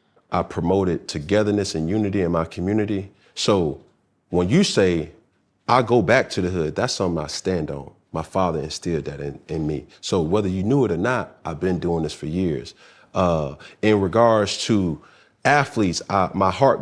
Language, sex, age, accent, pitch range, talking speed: English, male, 40-59, American, 90-115 Hz, 180 wpm